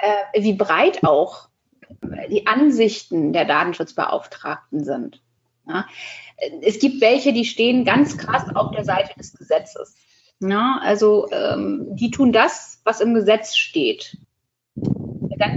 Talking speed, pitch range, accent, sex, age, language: 110 wpm, 185-230 Hz, German, female, 30-49, German